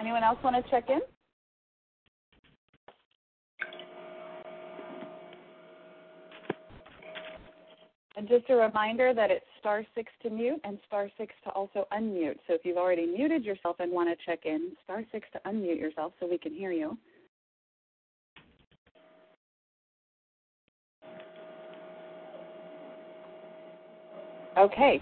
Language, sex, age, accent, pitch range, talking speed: English, female, 40-59, American, 190-265 Hz, 105 wpm